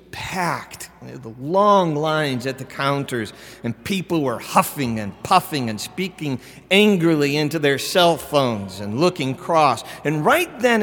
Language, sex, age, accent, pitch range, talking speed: English, male, 50-69, American, 125-180 Hz, 145 wpm